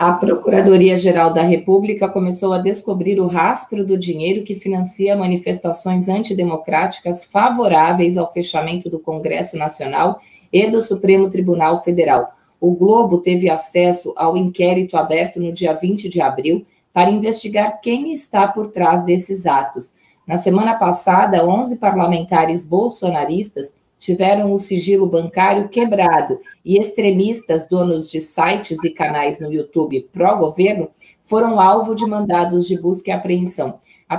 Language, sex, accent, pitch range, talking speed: Portuguese, female, Brazilian, 170-200 Hz, 135 wpm